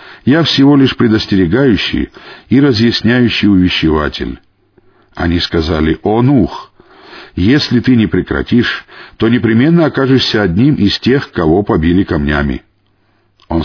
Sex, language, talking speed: male, Russian, 110 wpm